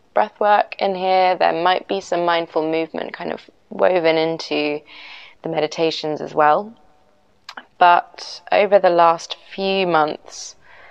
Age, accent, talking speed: 20-39, British, 130 wpm